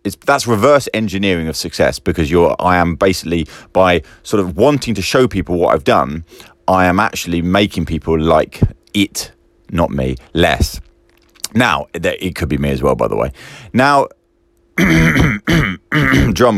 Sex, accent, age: male, British, 30-49